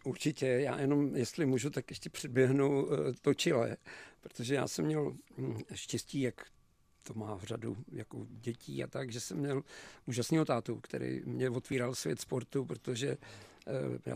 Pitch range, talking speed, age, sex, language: 125-150 Hz, 155 wpm, 50-69, male, Czech